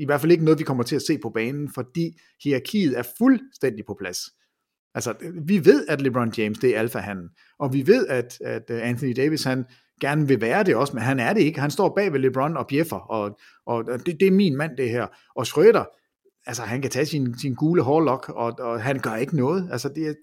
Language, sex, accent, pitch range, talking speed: English, male, Danish, 115-155 Hz, 235 wpm